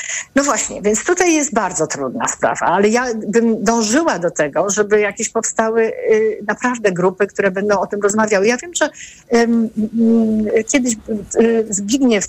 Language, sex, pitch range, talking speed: Polish, female, 200-275 Hz, 165 wpm